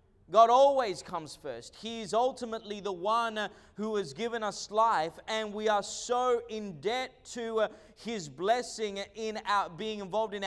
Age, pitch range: 30-49, 135-220 Hz